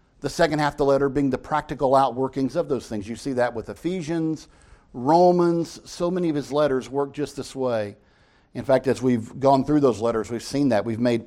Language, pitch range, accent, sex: English, 135-170 Hz, American, male